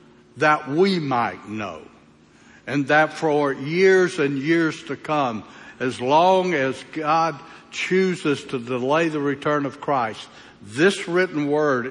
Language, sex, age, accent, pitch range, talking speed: English, male, 60-79, American, 130-160 Hz, 130 wpm